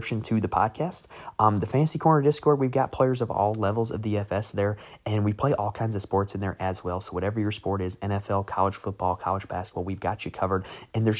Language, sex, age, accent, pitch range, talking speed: English, male, 20-39, American, 90-115 Hz, 235 wpm